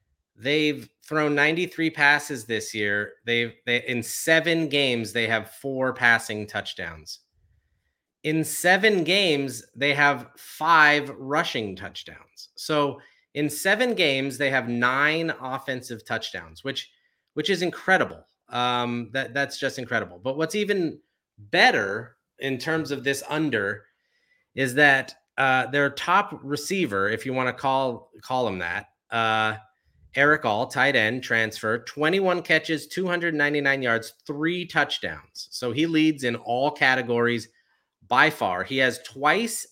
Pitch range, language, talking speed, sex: 120-155 Hz, English, 135 wpm, male